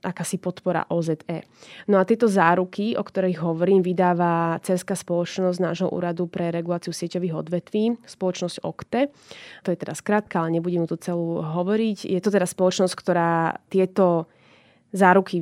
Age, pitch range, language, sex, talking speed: 20-39, 170-190 Hz, Slovak, female, 145 wpm